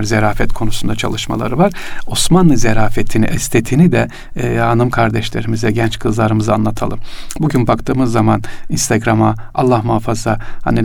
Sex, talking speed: male, 115 wpm